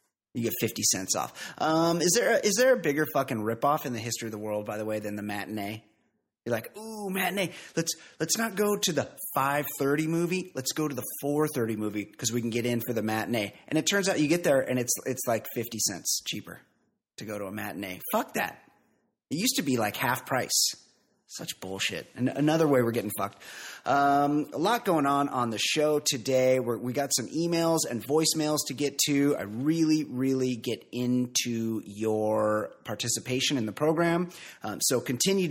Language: English